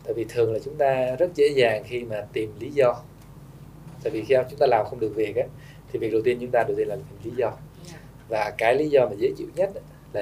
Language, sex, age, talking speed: Vietnamese, male, 20-39, 270 wpm